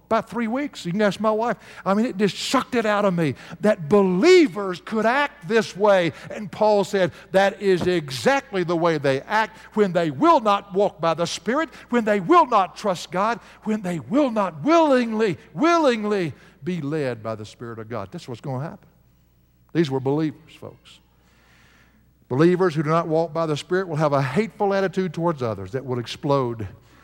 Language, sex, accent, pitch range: English, male, American, 140-205 Hz